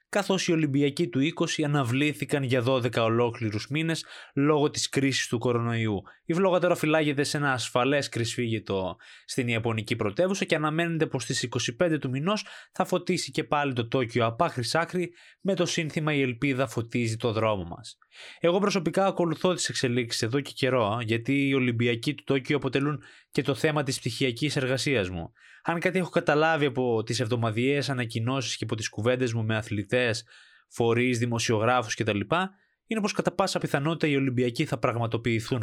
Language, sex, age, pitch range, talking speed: Greek, male, 20-39, 120-165 Hz, 160 wpm